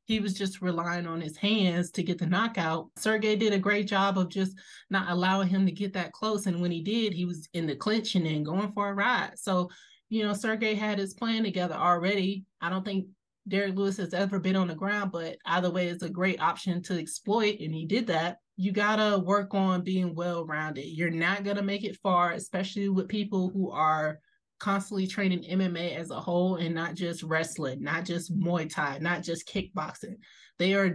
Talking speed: 215 wpm